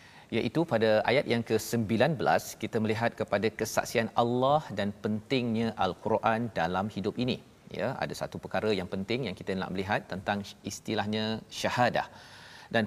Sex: male